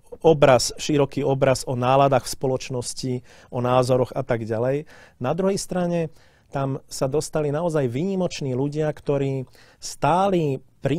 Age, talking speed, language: 40-59, 130 wpm, Slovak